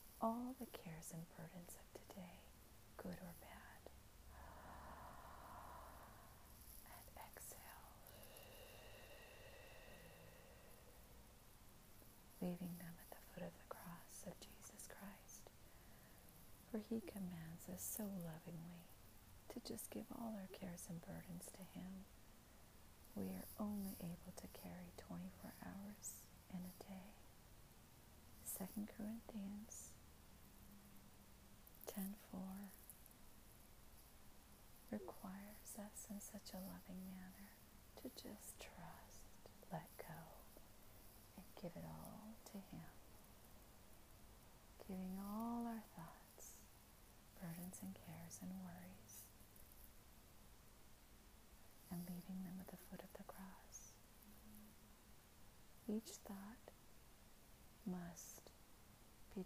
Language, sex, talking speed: English, female, 95 wpm